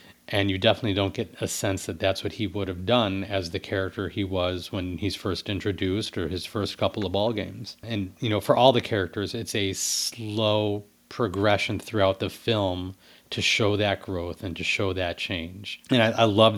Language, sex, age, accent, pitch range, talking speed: English, male, 40-59, American, 85-105 Hz, 205 wpm